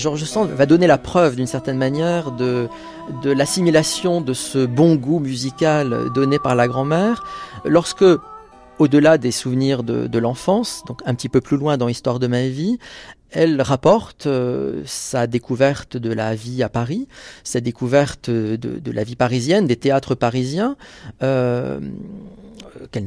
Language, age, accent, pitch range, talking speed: French, 40-59, French, 125-160 Hz, 160 wpm